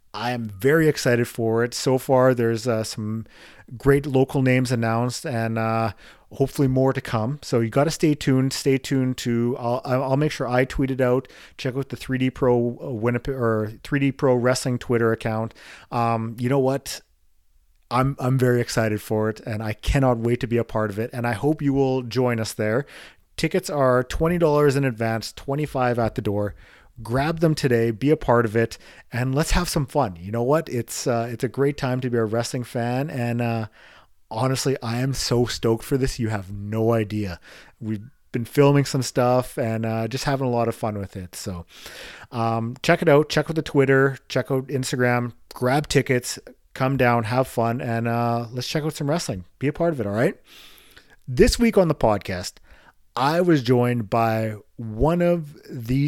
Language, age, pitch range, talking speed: English, 40-59, 115-135 Hz, 200 wpm